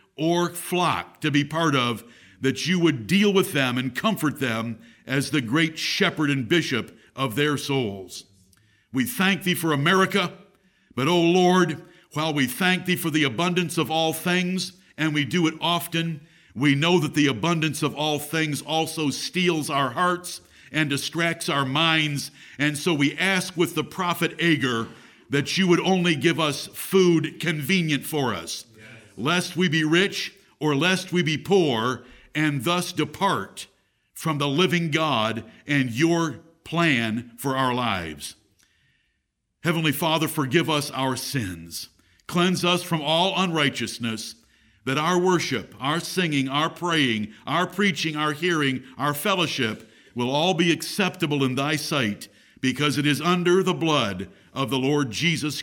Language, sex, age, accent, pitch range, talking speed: English, male, 50-69, American, 135-175 Hz, 155 wpm